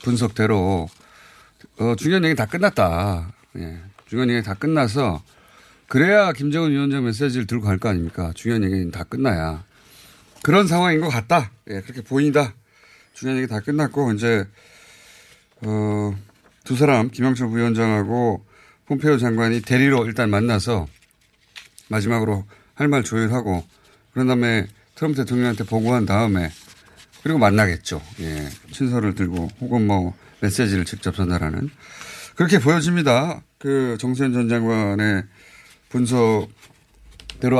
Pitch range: 100-135 Hz